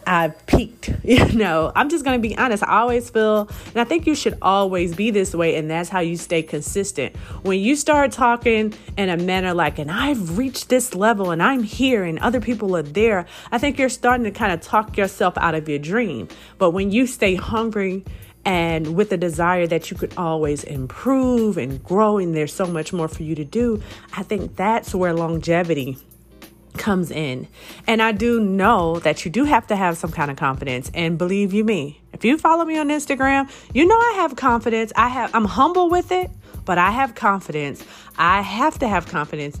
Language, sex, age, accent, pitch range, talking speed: English, female, 30-49, American, 170-240 Hz, 210 wpm